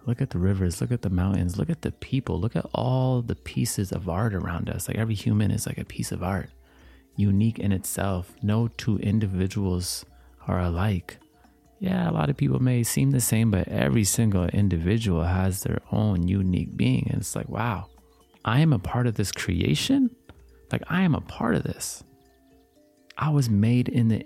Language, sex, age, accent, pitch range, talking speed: English, male, 30-49, American, 95-125 Hz, 195 wpm